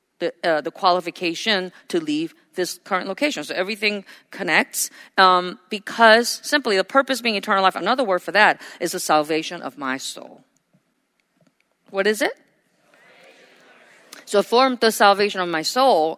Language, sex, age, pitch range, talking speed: English, female, 40-59, 180-230 Hz, 150 wpm